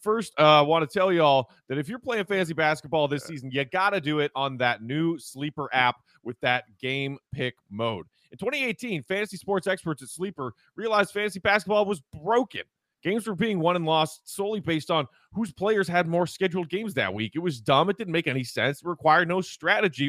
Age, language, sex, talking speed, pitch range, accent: 30-49, English, male, 210 wpm, 140-200 Hz, American